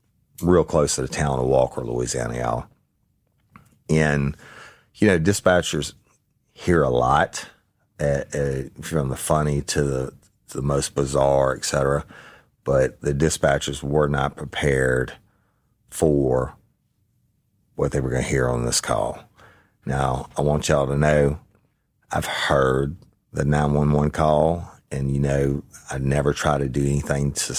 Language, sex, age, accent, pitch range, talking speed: English, male, 40-59, American, 65-75 Hz, 150 wpm